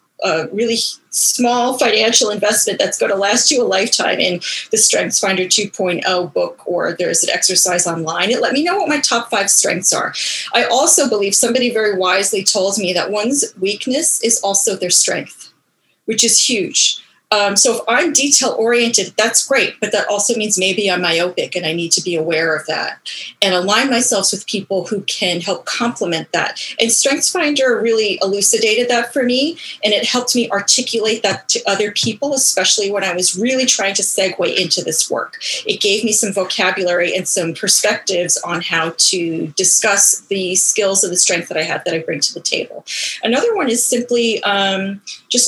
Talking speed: 185 wpm